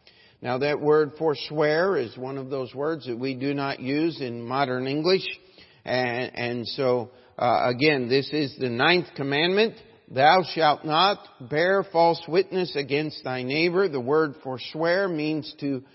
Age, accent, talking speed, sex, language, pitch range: 50-69, American, 155 wpm, male, English, 135-175 Hz